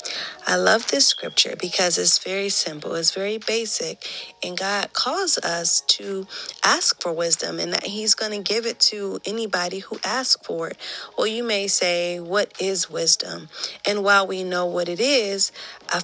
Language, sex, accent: English, female, American